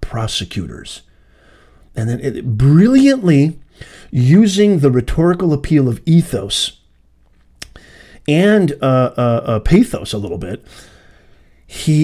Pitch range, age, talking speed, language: 115-175 Hz, 40-59, 95 wpm, English